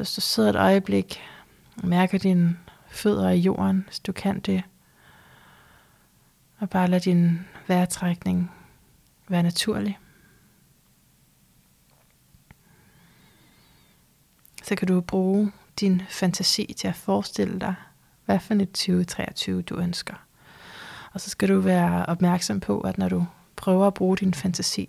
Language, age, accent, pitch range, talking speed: Danish, 30-49, native, 170-195 Hz, 130 wpm